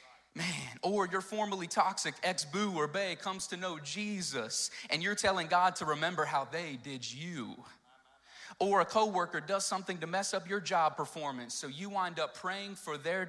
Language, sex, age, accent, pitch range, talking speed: English, male, 30-49, American, 140-185 Hz, 180 wpm